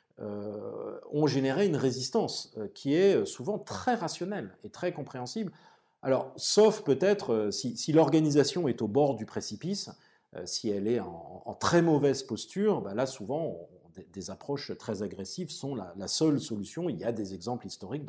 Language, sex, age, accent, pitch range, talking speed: French, male, 40-59, French, 110-160 Hz, 180 wpm